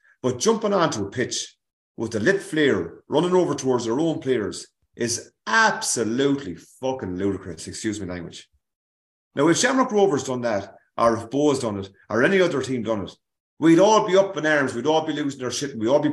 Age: 30-49